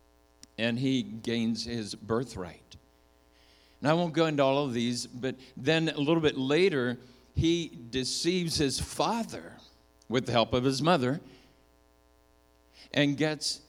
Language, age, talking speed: English, 60-79, 135 wpm